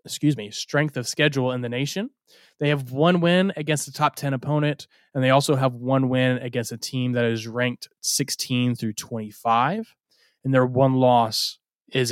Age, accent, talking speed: 20-39, American, 185 wpm